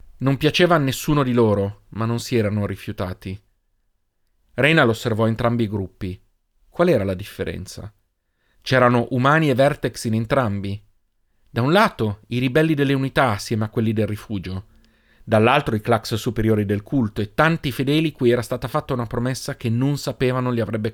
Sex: male